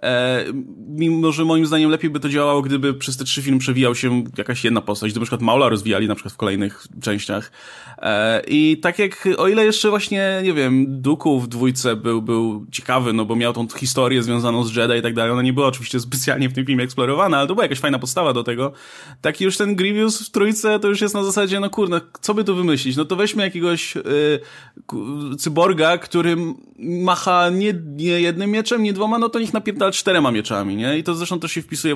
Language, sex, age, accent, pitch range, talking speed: Polish, male, 20-39, native, 120-160 Hz, 215 wpm